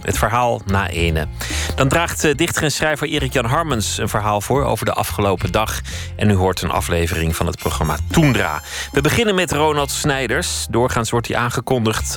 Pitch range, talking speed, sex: 90-125 Hz, 180 wpm, male